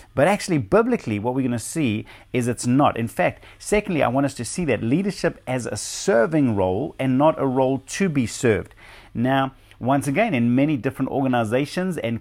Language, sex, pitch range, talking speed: English, male, 110-140 Hz, 195 wpm